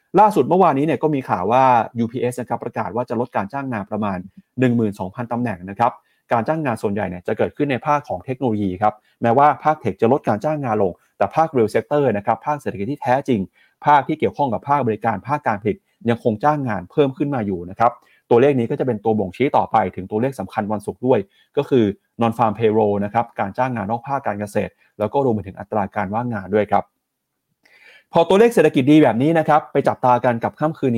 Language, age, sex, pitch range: Thai, 30-49, male, 105-140 Hz